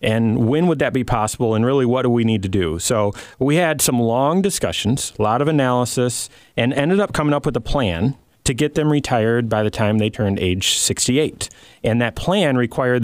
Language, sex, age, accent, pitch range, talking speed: English, male, 30-49, American, 105-135 Hz, 215 wpm